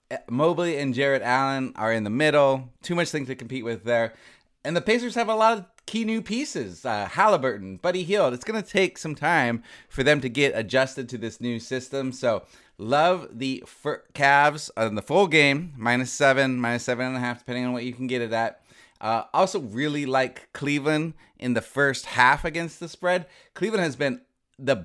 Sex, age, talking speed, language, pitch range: male, 30-49, 205 wpm, English, 115-145 Hz